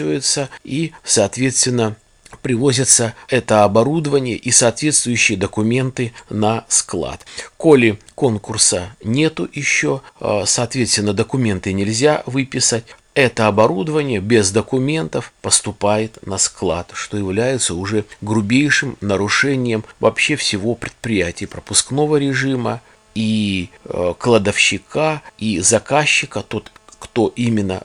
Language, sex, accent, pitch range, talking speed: Russian, male, native, 105-130 Hz, 95 wpm